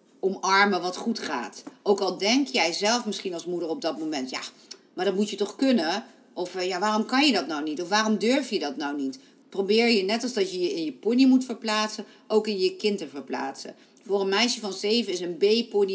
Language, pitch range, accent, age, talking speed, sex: Dutch, 180-235 Hz, Dutch, 50-69, 235 wpm, female